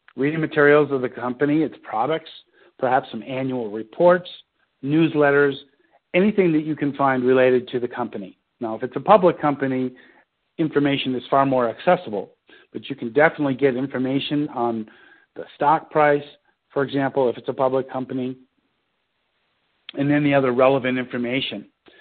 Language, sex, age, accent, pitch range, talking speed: English, male, 50-69, American, 125-150 Hz, 150 wpm